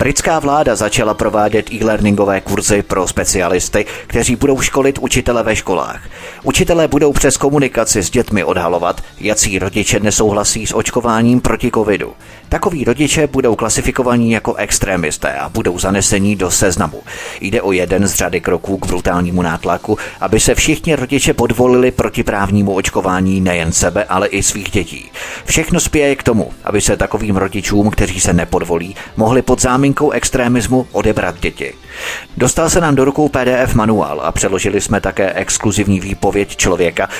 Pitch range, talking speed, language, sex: 95-120 Hz, 145 wpm, Czech, male